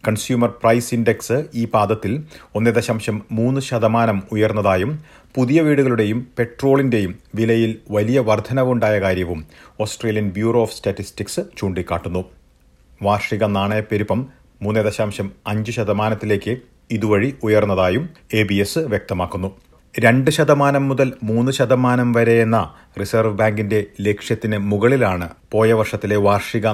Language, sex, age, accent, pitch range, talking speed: Malayalam, male, 40-59, native, 100-120 Hz, 95 wpm